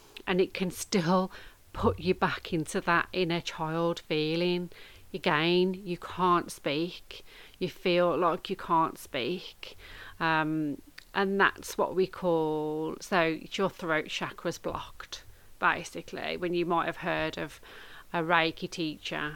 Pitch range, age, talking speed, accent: 155-185 Hz, 30-49, 135 wpm, British